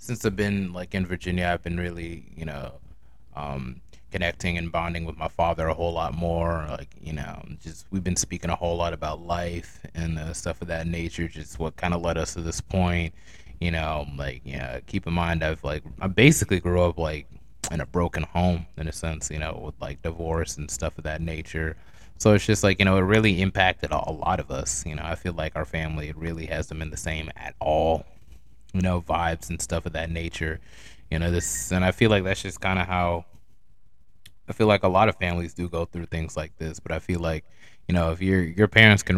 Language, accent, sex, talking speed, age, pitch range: English, American, male, 235 wpm, 20-39, 80-90 Hz